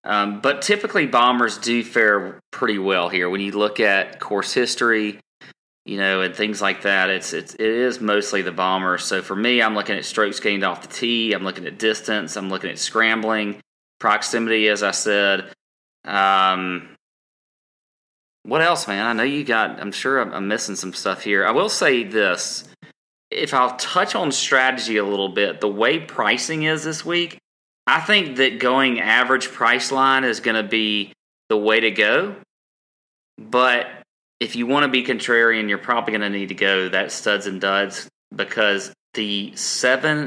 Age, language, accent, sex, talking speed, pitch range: 30-49, English, American, male, 185 wpm, 95-120 Hz